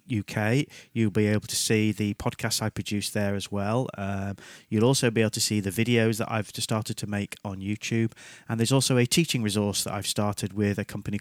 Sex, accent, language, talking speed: male, British, English, 220 wpm